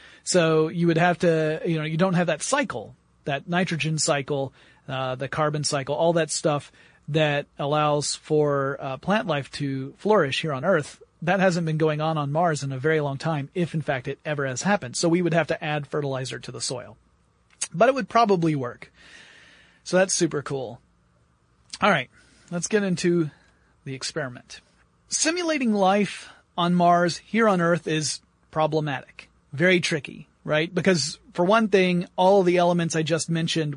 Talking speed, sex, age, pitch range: 180 wpm, male, 30-49, 145-175 Hz